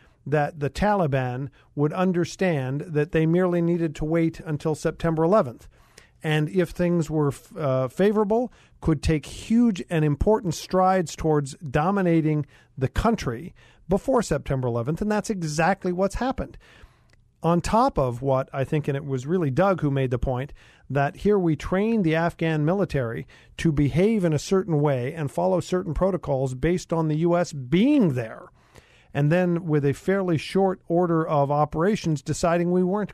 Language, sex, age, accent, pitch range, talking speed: English, male, 50-69, American, 145-185 Hz, 160 wpm